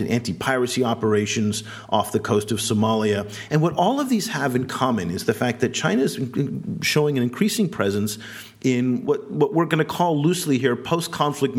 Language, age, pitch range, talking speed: English, 40-59, 115-145 Hz, 180 wpm